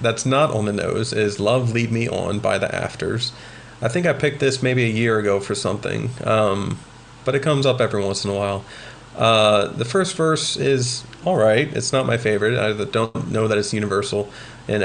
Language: English